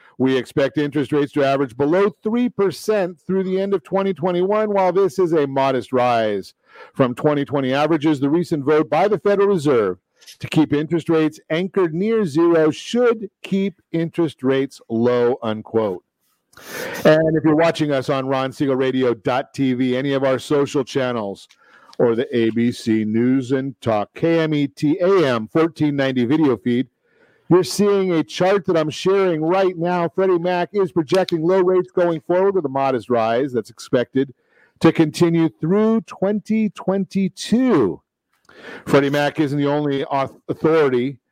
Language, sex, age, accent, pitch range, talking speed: English, male, 50-69, American, 130-180 Hz, 140 wpm